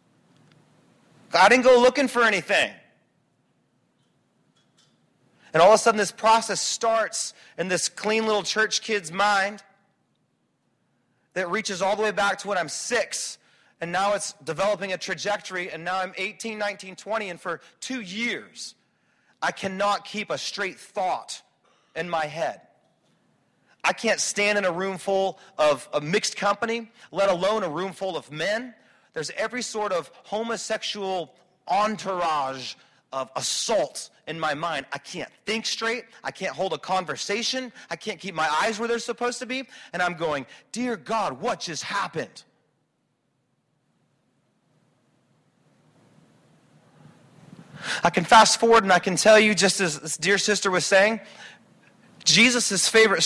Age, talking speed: 30-49, 145 wpm